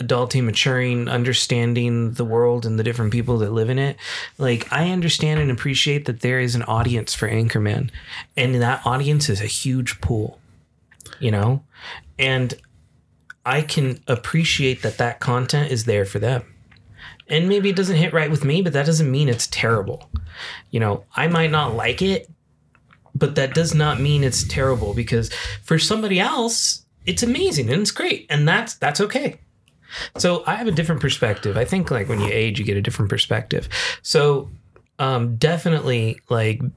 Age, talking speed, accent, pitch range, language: 30-49, 175 wpm, American, 115-150 Hz, English